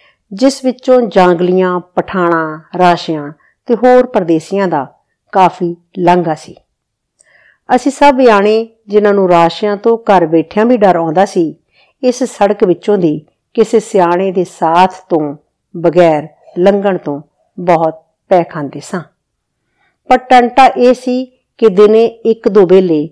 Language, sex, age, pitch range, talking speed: Punjabi, female, 50-69, 165-215 Hz, 125 wpm